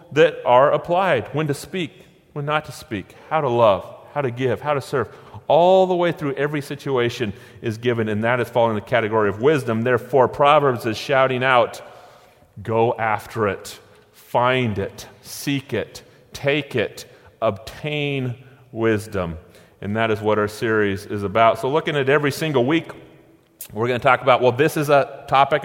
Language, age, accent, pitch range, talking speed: English, 30-49, American, 105-140 Hz, 175 wpm